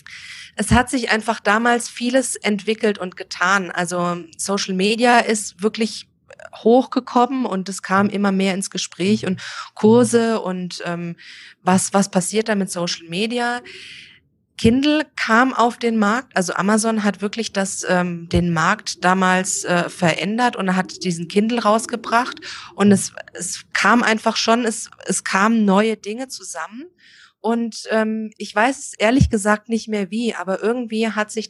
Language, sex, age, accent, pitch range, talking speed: German, female, 20-39, German, 185-230 Hz, 150 wpm